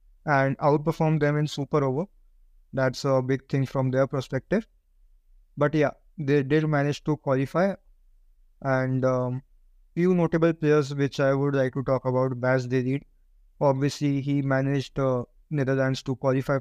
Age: 20-39